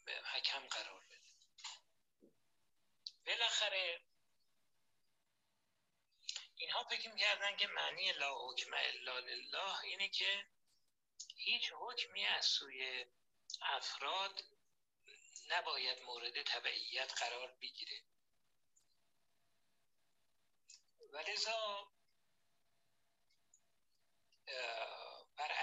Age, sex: 60-79, male